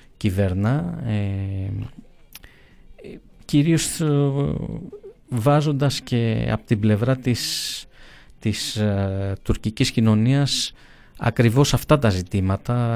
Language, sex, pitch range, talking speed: Greek, male, 105-135 Hz, 70 wpm